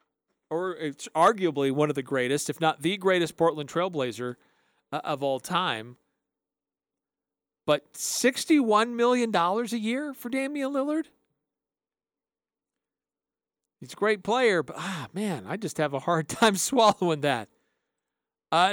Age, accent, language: 40-59, American, English